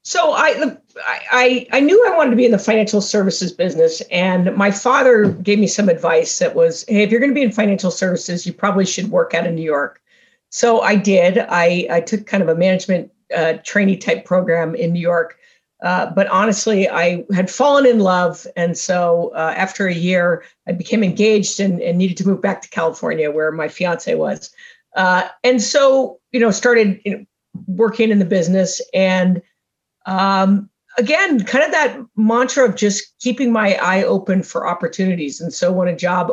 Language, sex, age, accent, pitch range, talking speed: English, female, 50-69, American, 180-230 Hz, 195 wpm